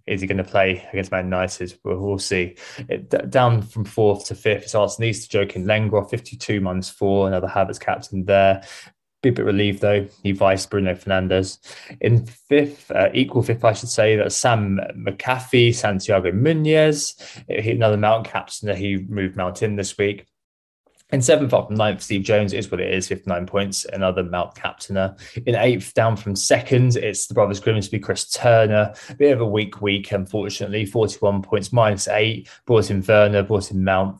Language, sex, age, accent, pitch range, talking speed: English, male, 20-39, British, 95-110 Hz, 185 wpm